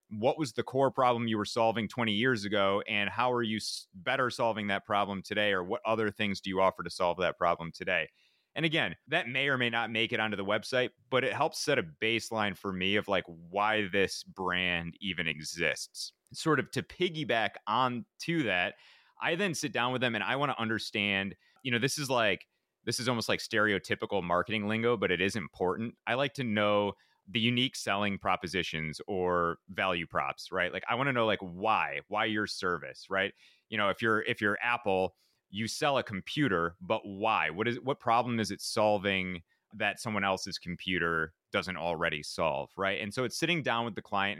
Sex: male